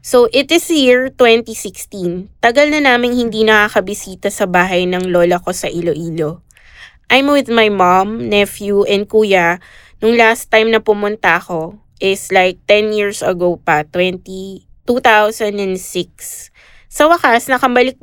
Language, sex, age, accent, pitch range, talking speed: English, female, 20-39, Filipino, 185-230 Hz, 140 wpm